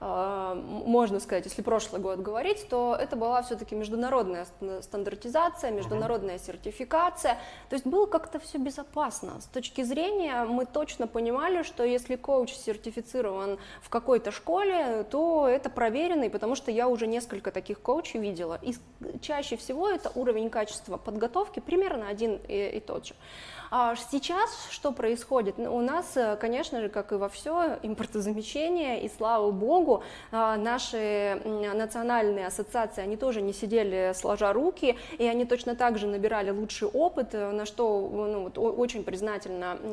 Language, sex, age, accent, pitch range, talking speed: Russian, female, 20-39, native, 205-260 Hz, 140 wpm